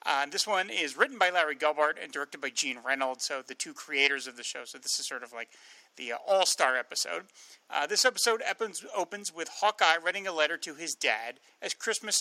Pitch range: 145-200 Hz